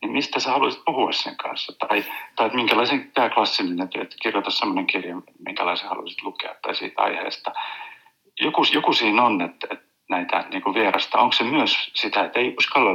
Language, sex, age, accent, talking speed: Finnish, male, 50-69, native, 180 wpm